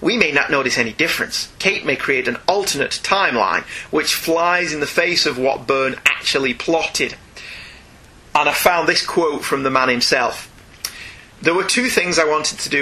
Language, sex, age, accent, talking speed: English, male, 30-49, British, 185 wpm